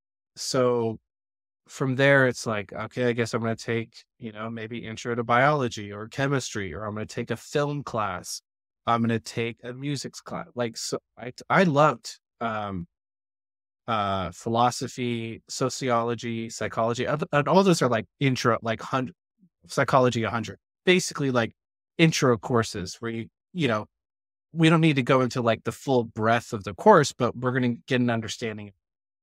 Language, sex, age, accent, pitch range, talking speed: English, male, 20-39, American, 105-130 Hz, 170 wpm